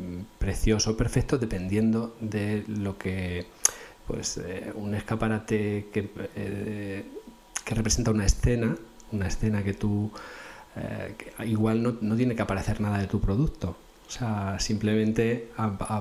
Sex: male